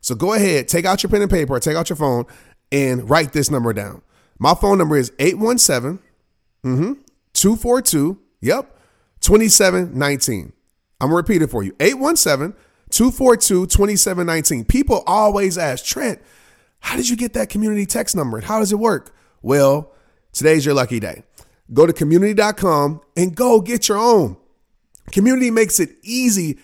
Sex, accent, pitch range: male, American, 145-215 Hz